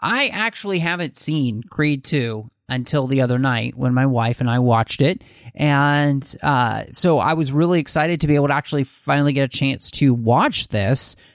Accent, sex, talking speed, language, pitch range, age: American, male, 190 wpm, English, 120-155 Hz, 30-49